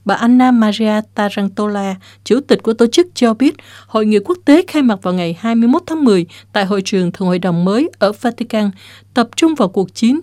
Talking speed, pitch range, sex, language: 210 wpm, 185-245 Hz, female, Vietnamese